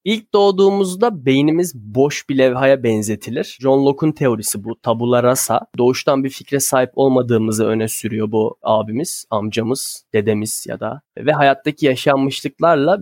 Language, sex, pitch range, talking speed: Turkish, male, 120-145 Hz, 135 wpm